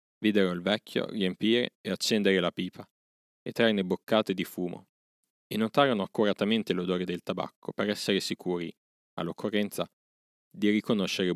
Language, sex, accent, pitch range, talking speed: Italian, male, native, 90-115 Hz, 130 wpm